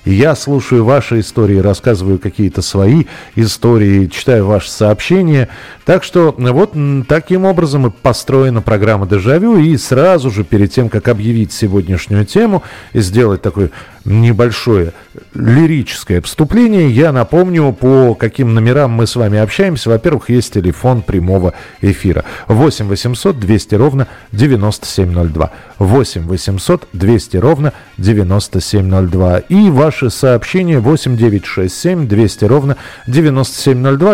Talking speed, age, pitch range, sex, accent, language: 115 wpm, 40-59, 100-140 Hz, male, native, Russian